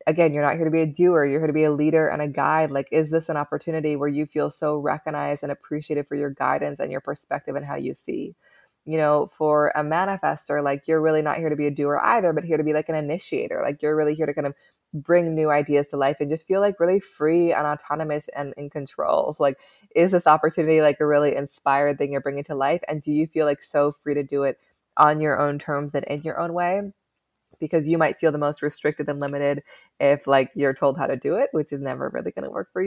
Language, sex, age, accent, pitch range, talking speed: English, female, 20-39, American, 145-160 Hz, 260 wpm